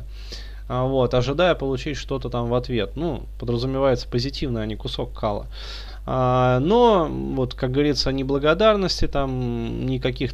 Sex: male